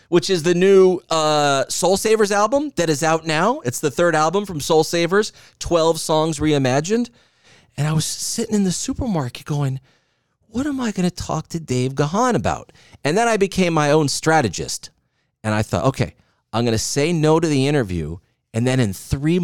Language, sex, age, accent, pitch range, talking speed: English, male, 40-59, American, 120-175 Hz, 195 wpm